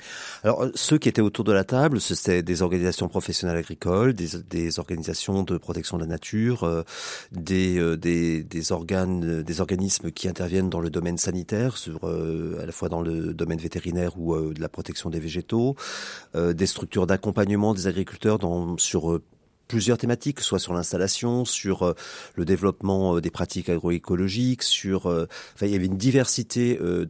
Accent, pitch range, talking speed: French, 85-100 Hz, 180 wpm